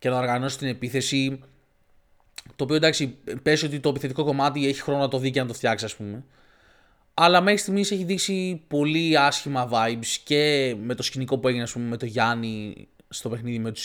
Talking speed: 205 wpm